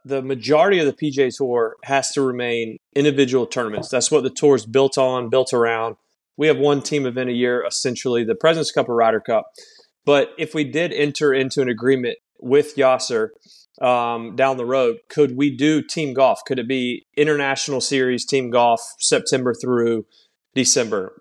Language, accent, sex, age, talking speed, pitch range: English, American, male, 30-49, 180 wpm, 125-150 Hz